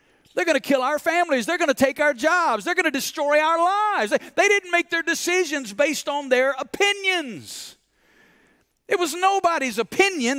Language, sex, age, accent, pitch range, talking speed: English, male, 50-69, American, 185-305 Hz, 185 wpm